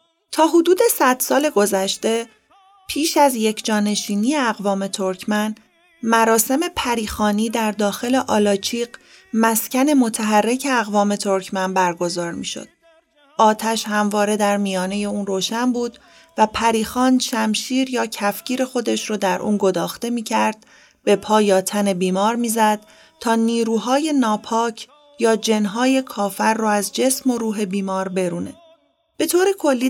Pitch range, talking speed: 210-265 Hz, 130 wpm